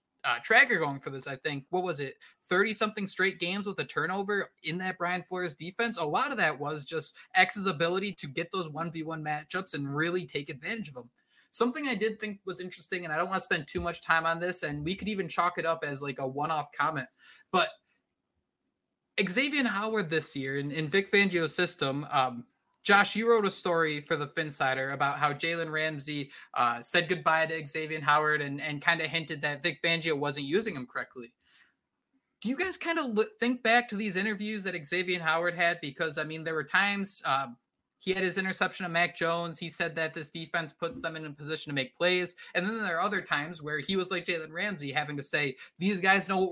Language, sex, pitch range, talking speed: English, male, 150-190 Hz, 220 wpm